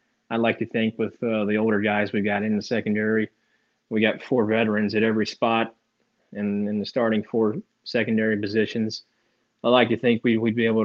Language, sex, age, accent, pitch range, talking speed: English, male, 20-39, American, 105-115 Hz, 210 wpm